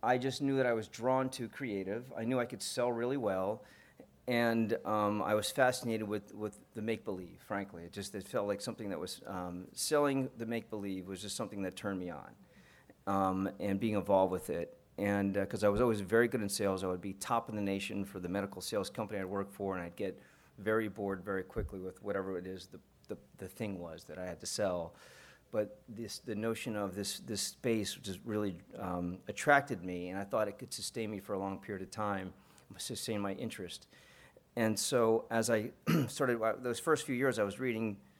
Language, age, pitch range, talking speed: English, 40-59, 95-115 Hz, 215 wpm